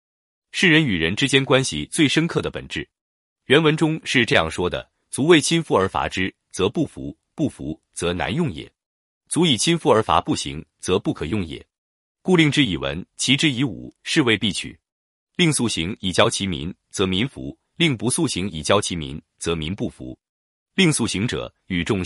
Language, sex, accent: Chinese, male, native